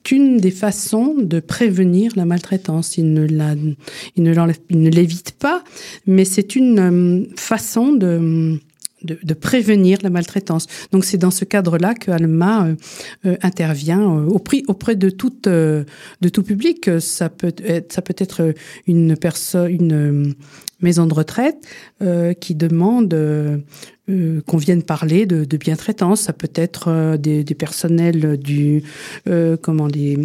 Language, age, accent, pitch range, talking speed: French, 50-69, French, 160-205 Hz, 160 wpm